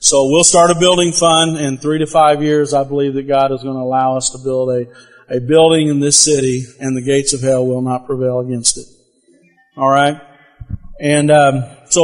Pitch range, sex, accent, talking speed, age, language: 135-165 Hz, male, American, 210 wpm, 40-59, English